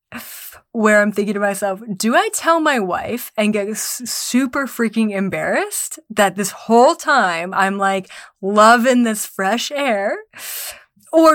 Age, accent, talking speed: 20-39, American, 135 wpm